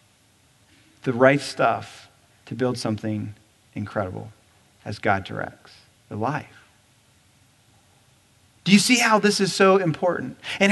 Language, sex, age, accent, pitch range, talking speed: English, male, 40-59, American, 140-215 Hz, 120 wpm